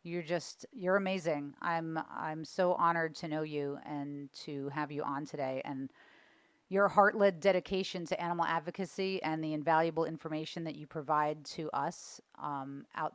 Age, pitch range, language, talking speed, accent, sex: 40-59, 145-170 Hz, English, 165 wpm, American, female